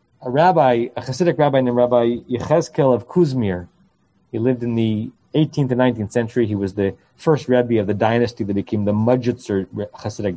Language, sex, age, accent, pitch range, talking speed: English, male, 30-49, American, 120-165 Hz, 180 wpm